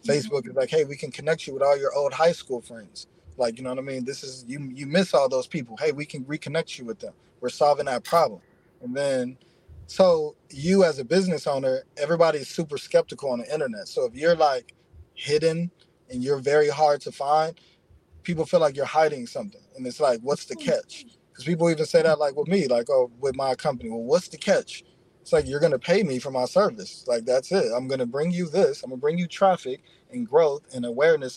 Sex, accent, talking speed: male, American, 235 wpm